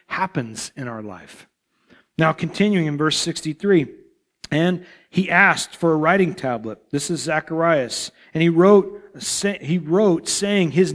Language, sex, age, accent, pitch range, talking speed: English, male, 40-59, American, 135-175 Hz, 140 wpm